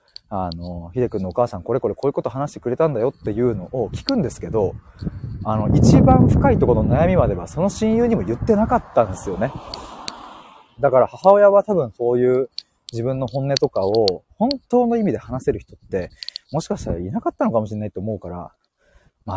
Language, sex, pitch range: Japanese, male, 100-155 Hz